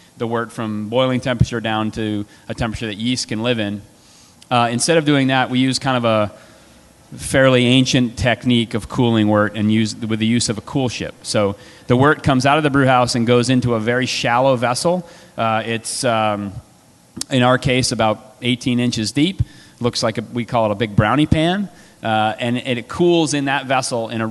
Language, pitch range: English, 110-130 Hz